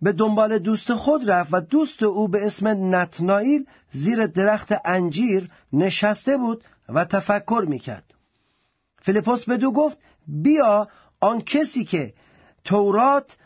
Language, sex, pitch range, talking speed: Persian, male, 180-245 Hz, 120 wpm